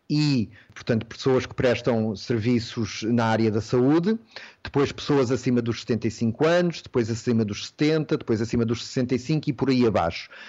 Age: 30-49